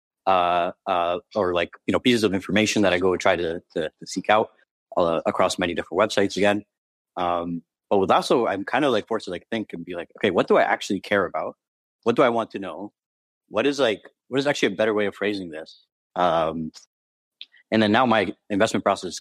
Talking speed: 230 wpm